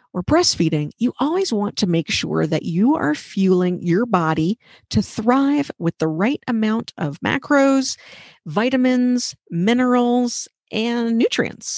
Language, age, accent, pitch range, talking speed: English, 40-59, American, 165-245 Hz, 135 wpm